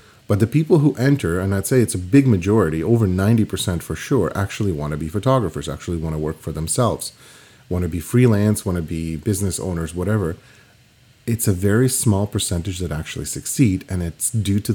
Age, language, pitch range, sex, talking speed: 30-49, English, 90-120 Hz, male, 200 wpm